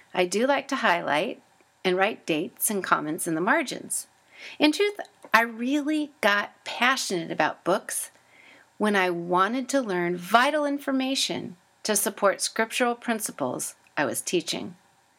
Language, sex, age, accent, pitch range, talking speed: English, female, 40-59, American, 190-275 Hz, 140 wpm